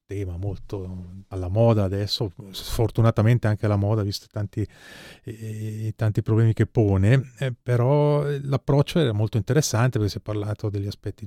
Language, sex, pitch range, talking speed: Italian, male, 100-125 Hz, 145 wpm